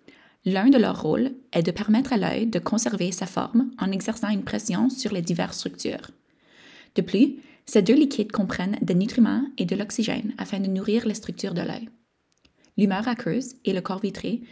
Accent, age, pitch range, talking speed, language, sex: Canadian, 20-39, 200-245 Hz, 185 wpm, French, female